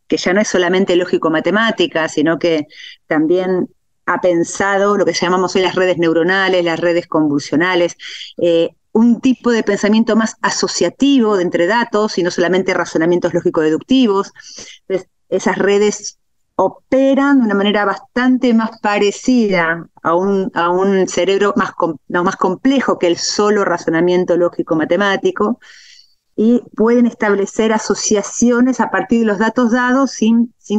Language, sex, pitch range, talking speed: Spanish, female, 175-225 Hz, 135 wpm